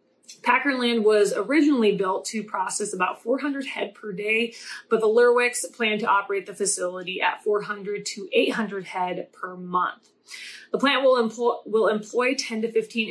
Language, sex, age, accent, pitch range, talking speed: English, female, 20-39, American, 195-245 Hz, 160 wpm